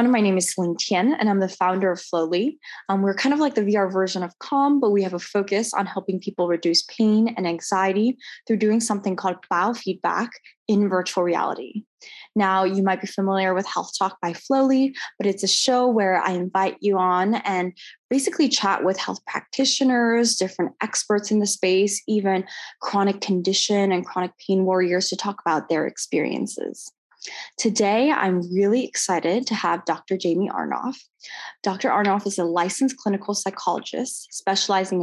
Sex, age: female, 10-29